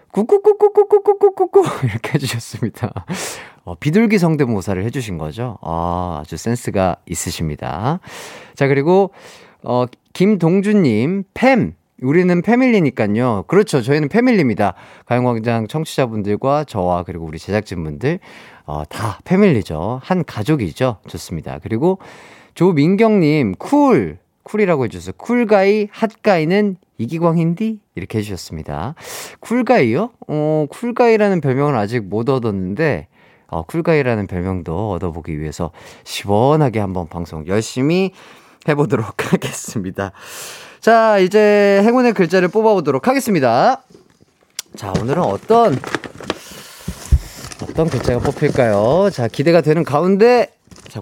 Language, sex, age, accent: Korean, male, 40-59, native